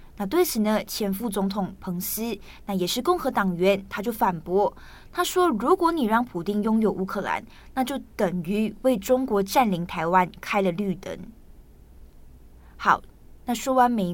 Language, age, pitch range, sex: Chinese, 20-39, 190-235 Hz, female